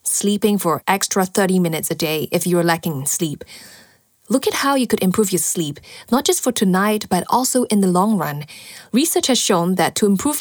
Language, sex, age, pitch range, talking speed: English, female, 20-39, 175-225 Hz, 200 wpm